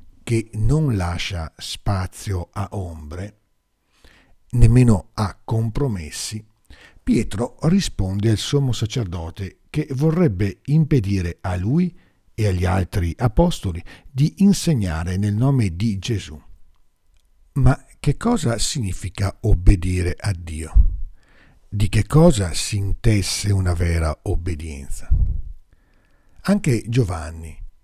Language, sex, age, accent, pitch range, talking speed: Italian, male, 50-69, native, 90-125 Hz, 100 wpm